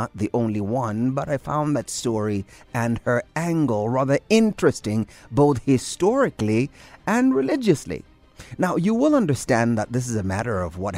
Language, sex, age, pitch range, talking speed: English, male, 30-49, 100-140 Hz, 160 wpm